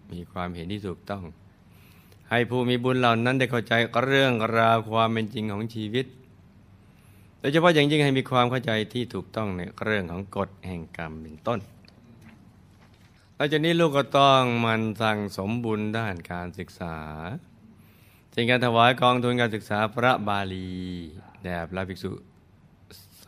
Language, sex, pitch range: Thai, male, 95-120 Hz